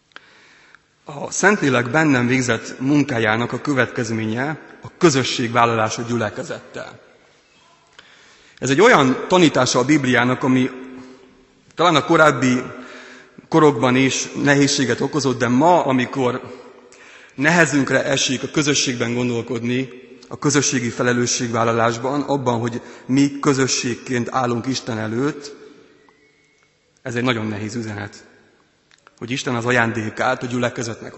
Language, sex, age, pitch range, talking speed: Hungarian, male, 30-49, 120-140 Hz, 100 wpm